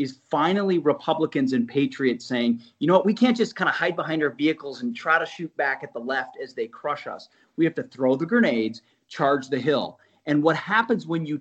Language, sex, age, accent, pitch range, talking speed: English, male, 30-49, American, 145-235 Hz, 230 wpm